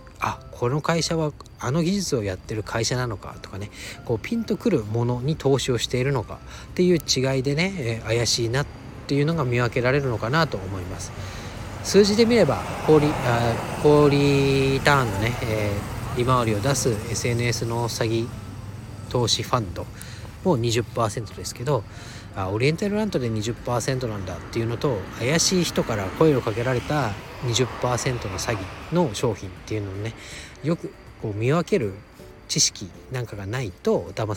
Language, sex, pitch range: Japanese, male, 95-135 Hz